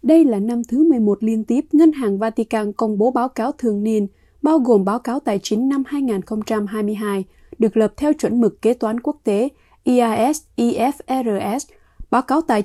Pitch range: 215-270 Hz